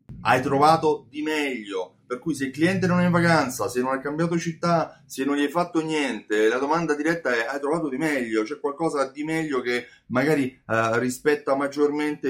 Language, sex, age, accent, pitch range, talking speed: Italian, male, 30-49, native, 110-150 Hz, 195 wpm